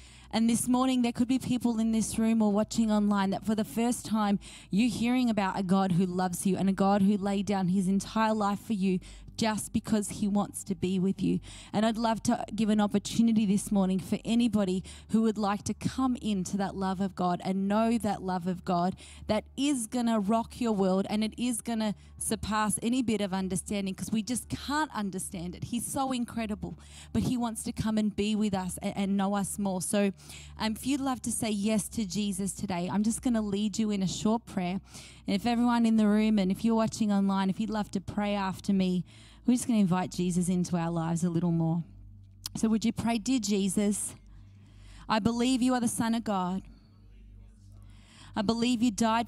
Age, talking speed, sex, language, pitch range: 20-39, 220 wpm, female, English, 170-220 Hz